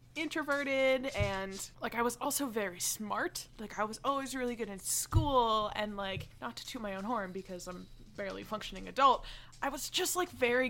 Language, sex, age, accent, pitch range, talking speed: English, female, 20-39, American, 185-235 Hz, 190 wpm